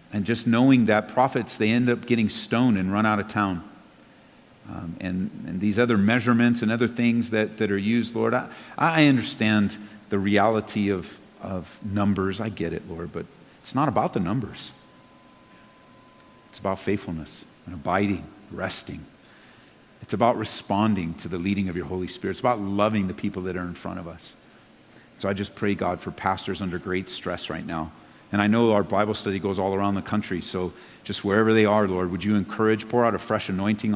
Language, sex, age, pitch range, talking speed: English, male, 50-69, 100-120 Hz, 195 wpm